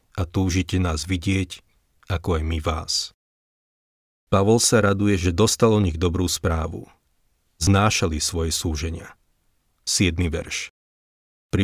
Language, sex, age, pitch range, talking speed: Slovak, male, 40-59, 80-100 Hz, 120 wpm